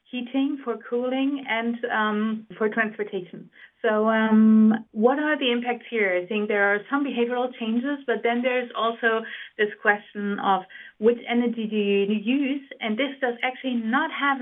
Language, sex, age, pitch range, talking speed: English, female, 30-49, 210-250 Hz, 160 wpm